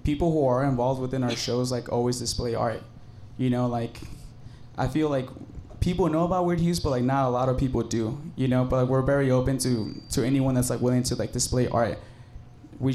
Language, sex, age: English, male, 20-39